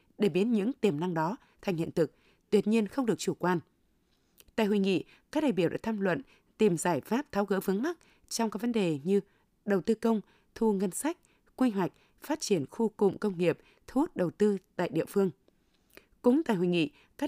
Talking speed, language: 215 wpm, Vietnamese